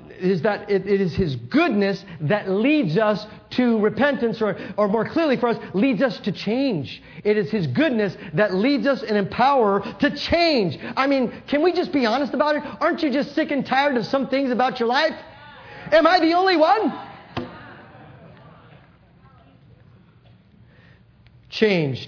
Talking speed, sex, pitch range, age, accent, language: 165 wpm, male, 175-230 Hz, 40-59, American, English